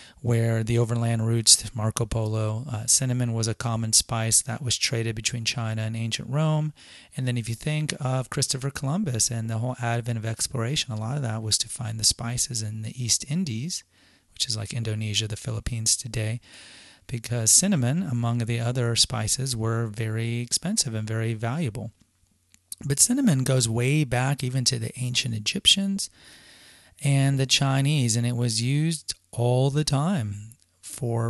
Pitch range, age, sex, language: 115-135 Hz, 30-49, male, English